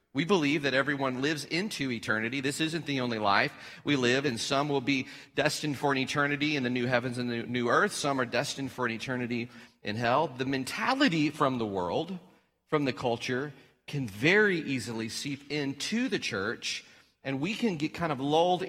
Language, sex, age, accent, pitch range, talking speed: English, male, 40-59, American, 125-170 Hz, 195 wpm